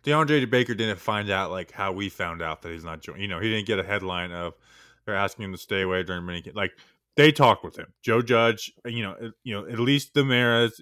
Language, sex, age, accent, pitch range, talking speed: English, male, 20-39, American, 95-125 Hz, 255 wpm